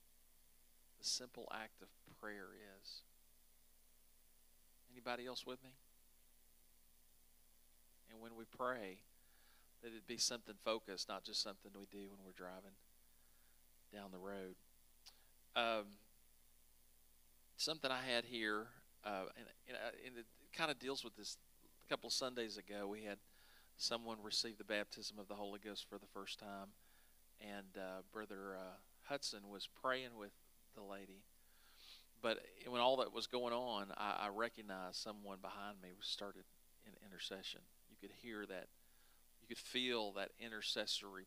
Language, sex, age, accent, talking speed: English, male, 40-59, American, 140 wpm